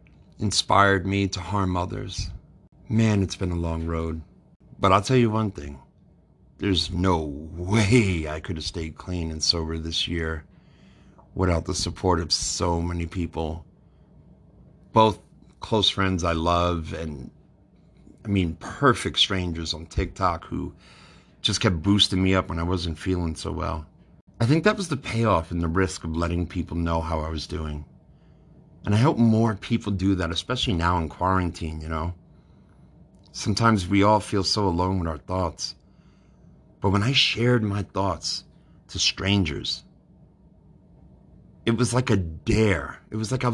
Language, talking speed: English, 160 wpm